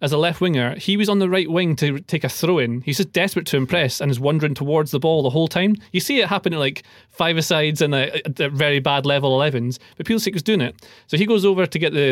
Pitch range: 135-180 Hz